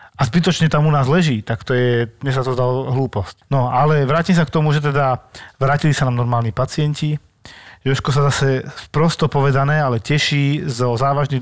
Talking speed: 190 wpm